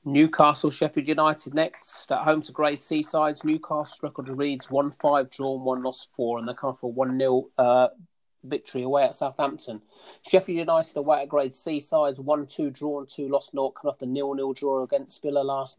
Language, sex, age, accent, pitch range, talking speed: English, male, 40-59, British, 130-155 Hz, 175 wpm